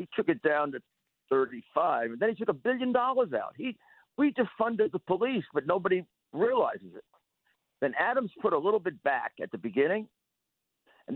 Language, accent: English, American